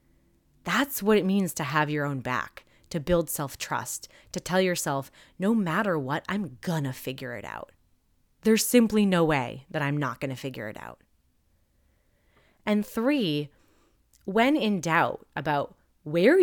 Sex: female